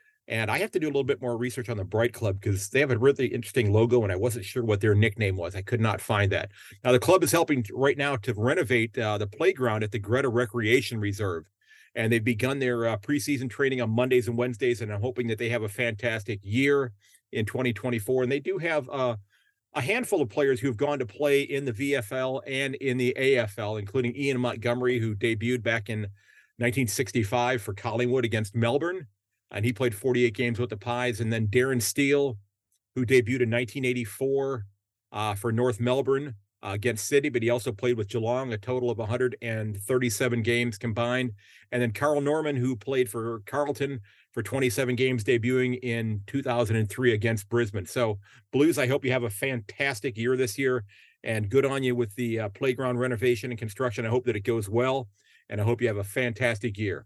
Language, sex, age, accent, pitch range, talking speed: English, male, 40-59, American, 115-130 Hz, 205 wpm